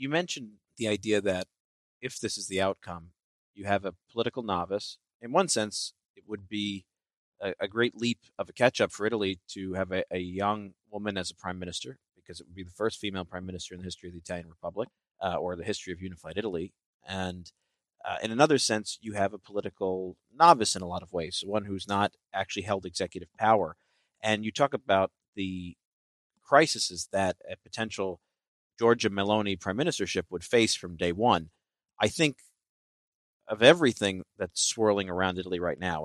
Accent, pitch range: American, 90-110 Hz